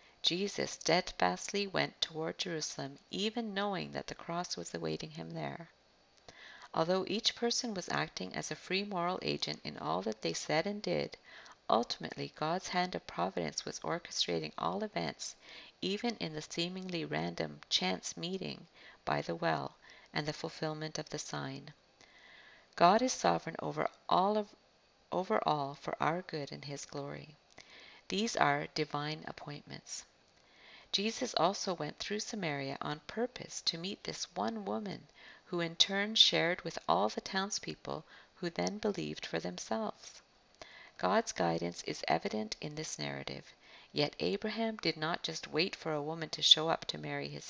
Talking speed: 150 wpm